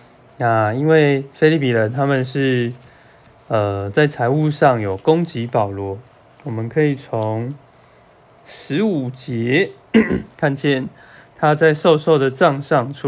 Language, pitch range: Chinese, 115-145 Hz